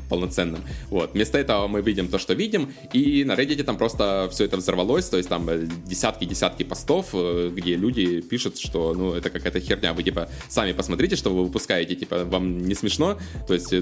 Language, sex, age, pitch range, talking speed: Russian, male, 20-39, 90-115 Hz, 185 wpm